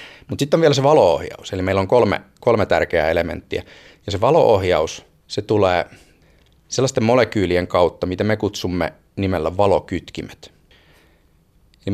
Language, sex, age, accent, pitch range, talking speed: Finnish, male, 30-49, native, 90-115 Hz, 135 wpm